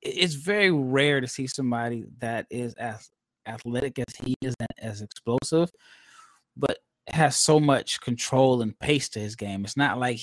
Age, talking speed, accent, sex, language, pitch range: 20-39, 170 wpm, American, male, English, 120-150 Hz